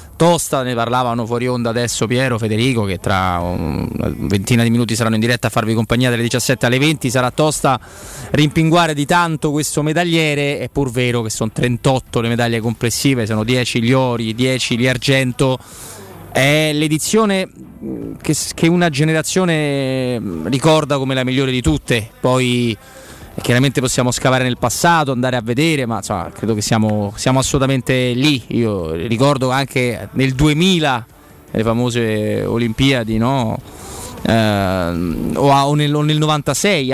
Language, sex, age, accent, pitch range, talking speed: Italian, male, 20-39, native, 115-150 Hz, 150 wpm